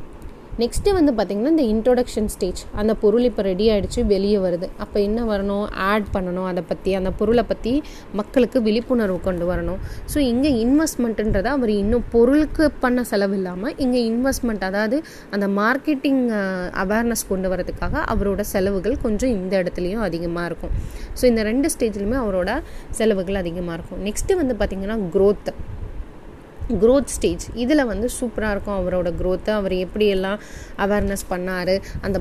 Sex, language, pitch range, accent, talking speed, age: female, Tamil, 190-245 Hz, native, 145 wpm, 20-39